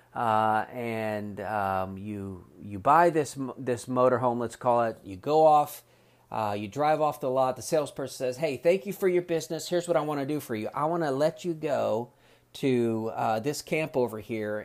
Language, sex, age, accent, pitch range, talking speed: English, male, 40-59, American, 110-150 Hz, 205 wpm